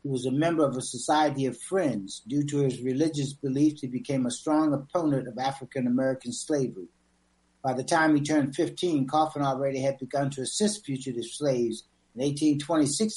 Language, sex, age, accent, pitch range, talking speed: English, male, 60-79, American, 130-155 Hz, 175 wpm